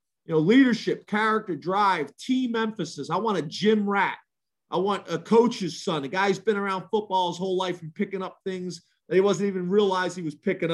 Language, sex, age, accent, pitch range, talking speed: English, male, 40-59, American, 165-205 Hz, 205 wpm